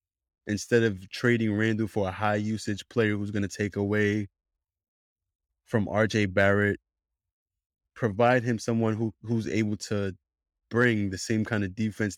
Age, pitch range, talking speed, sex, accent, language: 20-39, 95-110 Hz, 145 wpm, male, American, English